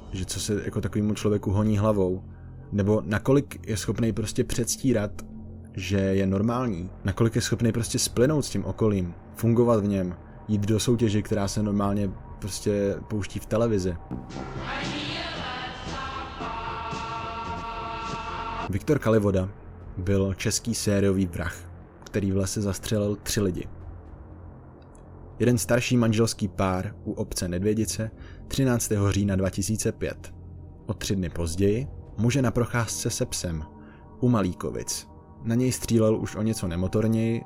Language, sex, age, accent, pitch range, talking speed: Czech, male, 20-39, native, 95-110 Hz, 125 wpm